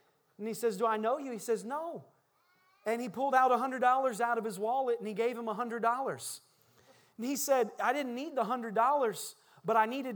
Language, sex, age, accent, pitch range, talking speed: English, male, 30-49, American, 225-335 Hz, 205 wpm